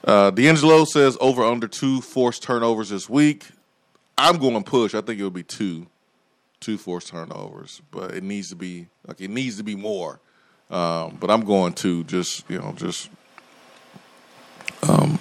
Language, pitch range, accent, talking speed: English, 95-115 Hz, American, 175 wpm